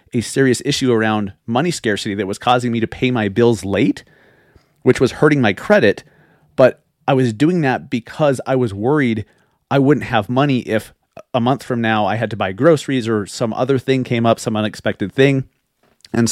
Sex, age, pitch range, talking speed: male, 30-49, 110-135 Hz, 195 wpm